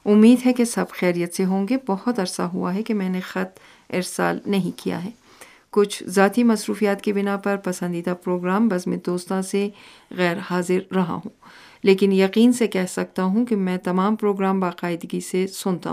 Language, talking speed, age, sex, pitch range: Urdu, 185 wpm, 40-59, female, 180-205 Hz